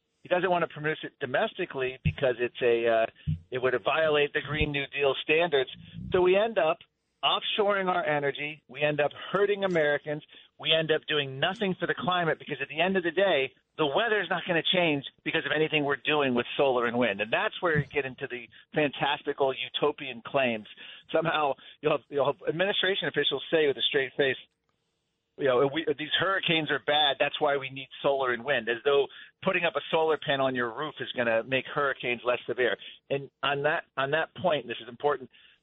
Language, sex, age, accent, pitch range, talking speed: English, male, 40-59, American, 130-160 Hz, 210 wpm